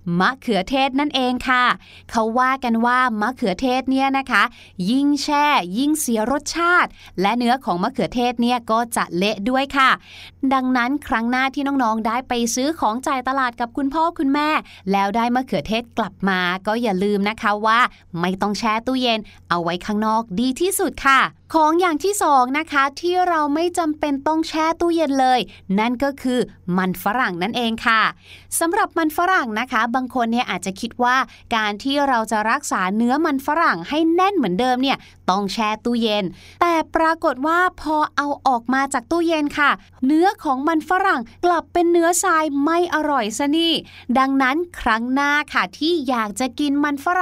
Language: Thai